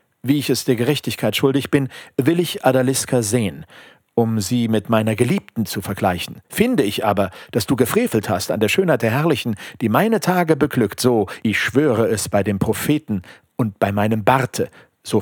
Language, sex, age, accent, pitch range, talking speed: German, male, 50-69, German, 110-145 Hz, 180 wpm